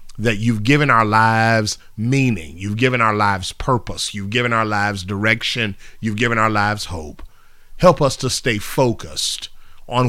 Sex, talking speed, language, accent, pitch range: male, 160 wpm, English, American, 105-135 Hz